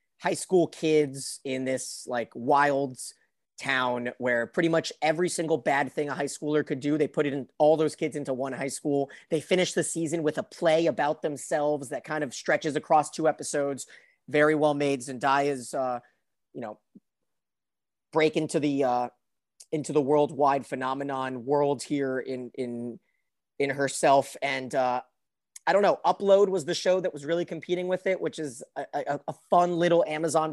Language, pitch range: English, 130-155 Hz